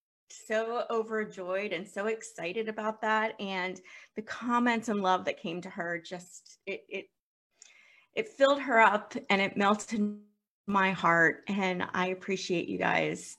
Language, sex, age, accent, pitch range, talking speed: English, female, 30-49, American, 185-220 Hz, 150 wpm